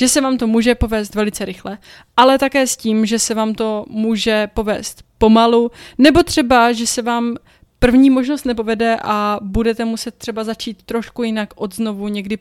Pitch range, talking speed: 205-250 Hz, 175 wpm